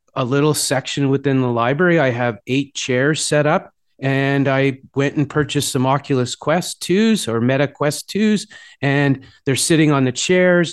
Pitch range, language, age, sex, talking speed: 125-160 Hz, English, 30-49, male, 175 wpm